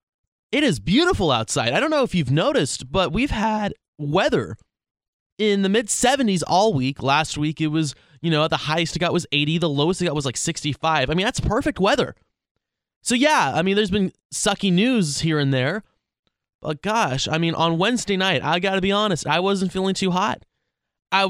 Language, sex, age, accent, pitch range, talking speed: English, male, 20-39, American, 135-190 Hz, 200 wpm